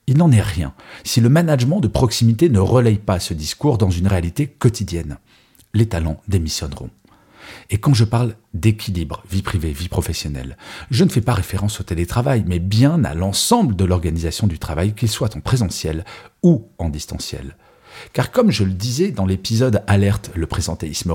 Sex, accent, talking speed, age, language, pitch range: male, French, 175 wpm, 40-59, French, 90-120 Hz